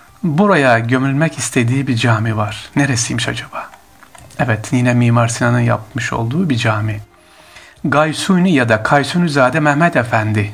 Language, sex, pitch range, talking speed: Turkish, male, 120-160 Hz, 125 wpm